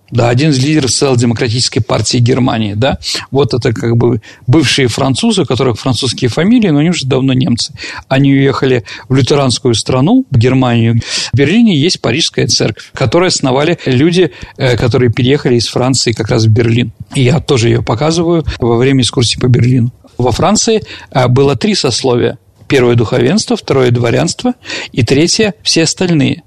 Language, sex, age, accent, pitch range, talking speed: Russian, male, 50-69, native, 120-150 Hz, 160 wpm